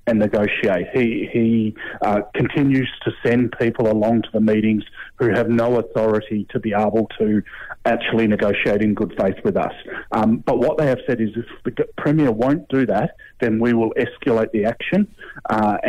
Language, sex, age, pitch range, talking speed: English, male, 30-49, 110-125 Hz, 180 wpm